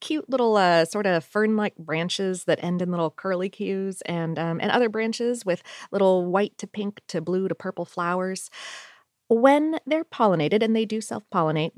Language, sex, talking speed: English, female, 180 wpm